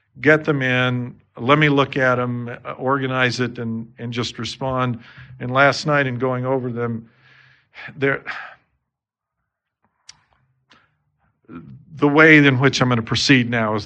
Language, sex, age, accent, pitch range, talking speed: English, male, 50-69, American, 115-140 Hz, 140 wpm